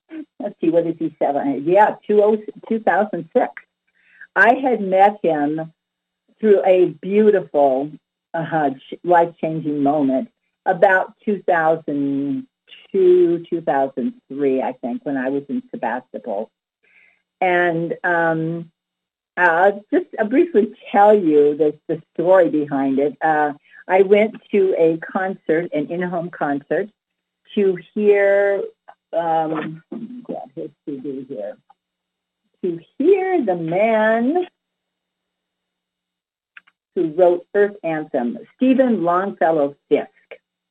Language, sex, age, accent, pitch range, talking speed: English, female, 50-69, American, 155-220 Hz, 100 wpm